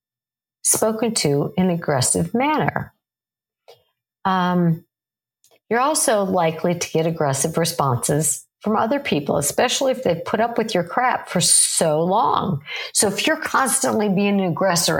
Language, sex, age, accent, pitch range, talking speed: English, female, 50-69, American, 145-185 Hz, 135 wpm